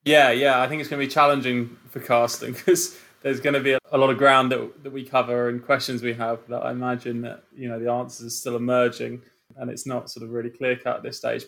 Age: 20-39